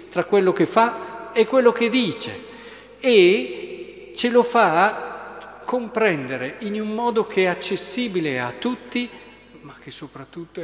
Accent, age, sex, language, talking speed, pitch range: native, 50-69, male, Italian, 135 wpm, 170-225 Hz